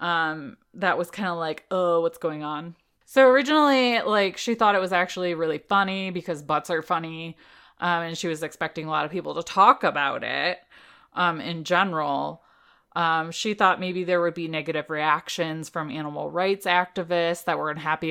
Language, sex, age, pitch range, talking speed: English, female, 20-39, 165-205 Hz, 185 wpm